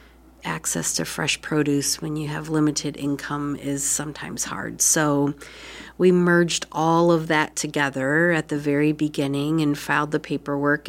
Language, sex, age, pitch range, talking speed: English, female, 40-59, 145-160 Hz, 150 wpm